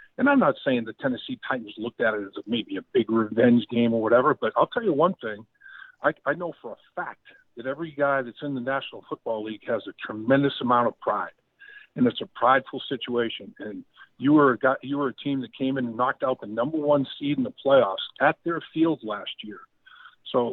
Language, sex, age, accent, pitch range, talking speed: English, male, 50-69, American, 125-190 Hz, 230 wpm